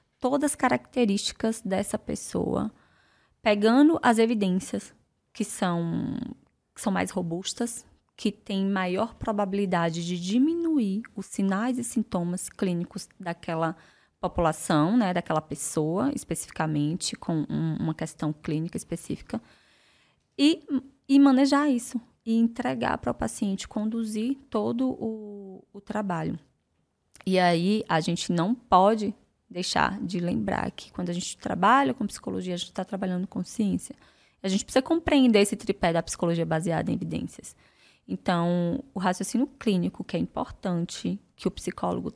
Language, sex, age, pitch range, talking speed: Portuguese, female, 20-39, 175-230 Hz, 130 wpm